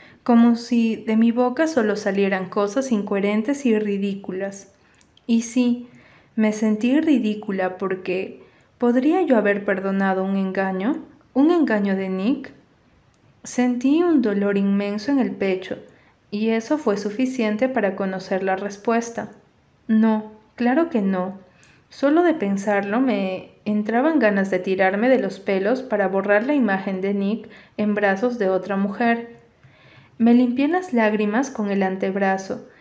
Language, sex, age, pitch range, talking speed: Spanish, female, 30-49, 200-245 Hz, 135 wpm